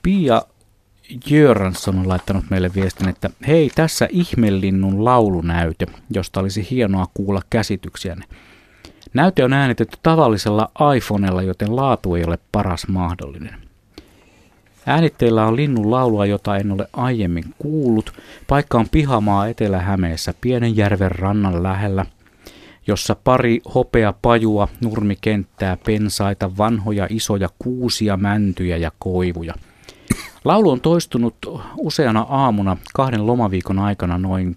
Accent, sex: native, male